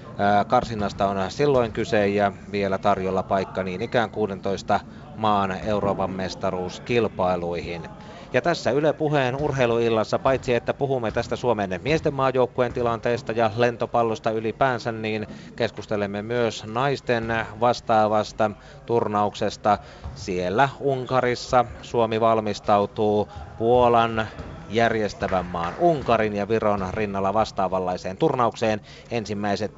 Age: 30-49